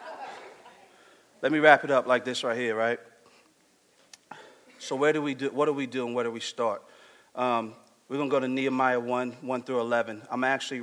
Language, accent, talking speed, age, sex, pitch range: English, American, 210 wpm, 40-59, male, 115-135 Hz